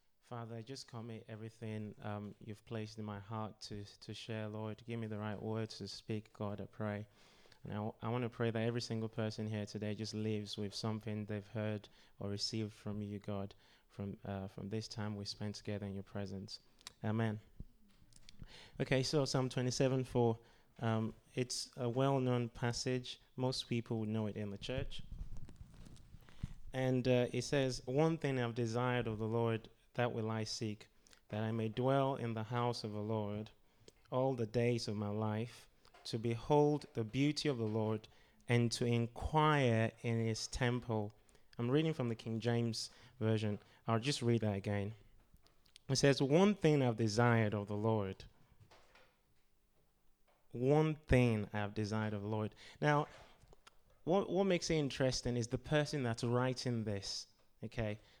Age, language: 20-39, English